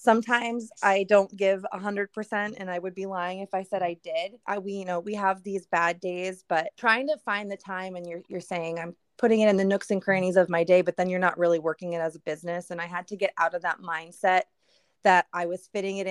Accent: American